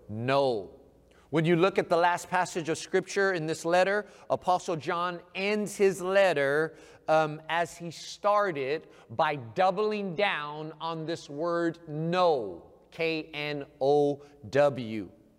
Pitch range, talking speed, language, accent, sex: 170-225 Hz, 115 wpm, English, American, male